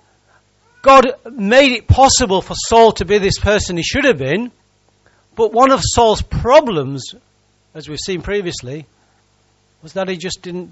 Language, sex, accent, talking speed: English, male, British, 155 wpm